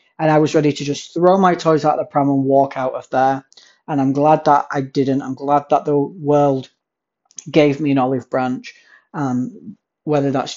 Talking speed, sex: 210 wpm, male